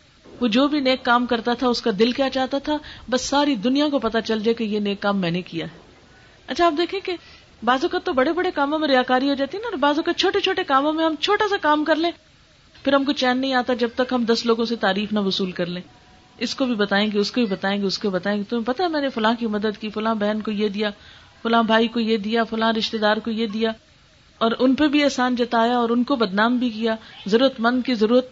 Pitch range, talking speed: 210-260 Hz, 270 wpm